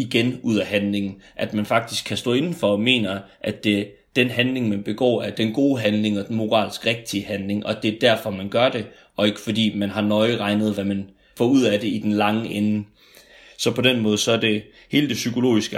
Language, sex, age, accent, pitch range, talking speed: Danish, male, 30-49, native, 105-115 Hz, 230 wpm